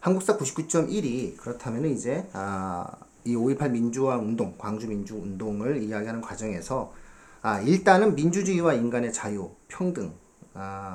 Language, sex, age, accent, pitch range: Korean, male, 40-59, native, 105-160 Hz